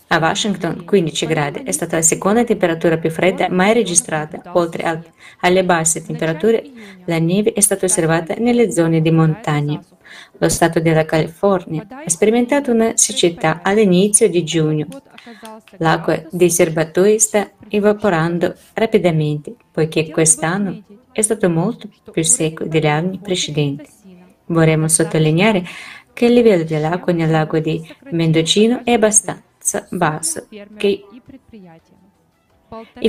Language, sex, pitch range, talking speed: Italian, female, 160-210 Hz, 125 wpm